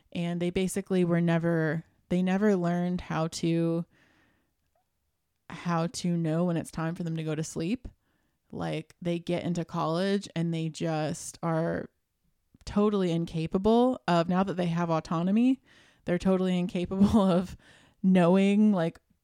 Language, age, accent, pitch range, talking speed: English, 20-39, American, 165-185 Hz, 140 wpm